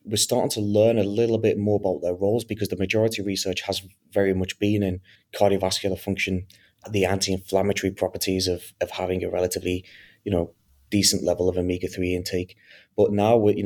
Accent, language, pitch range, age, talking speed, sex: British, English, 95-105 Hz, 20-39, 185 wpm, male